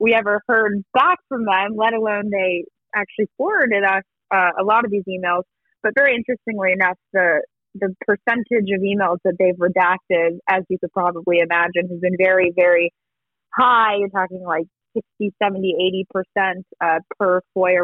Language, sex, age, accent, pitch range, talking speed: English, female, 20-39, American, 185-245 Hz, 170 wpm